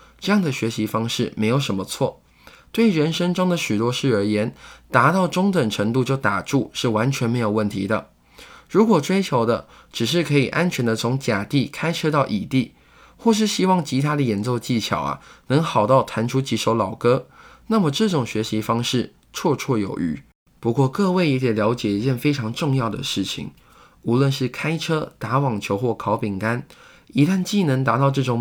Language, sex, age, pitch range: Chinese, male, 20-39, 110-155 Hz